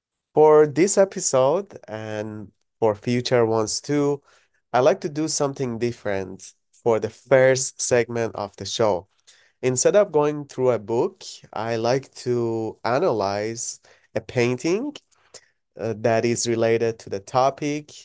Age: 30-49